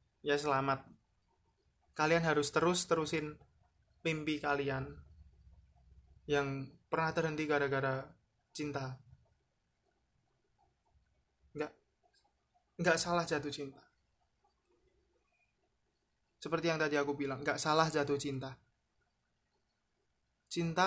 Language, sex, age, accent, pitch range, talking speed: Indonesian, male, 20-39, native, 125-155 Hz, 80 wpm